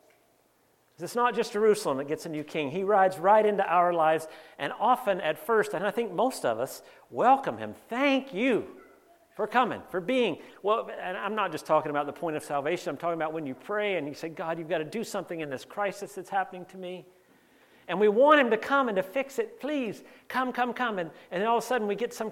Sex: male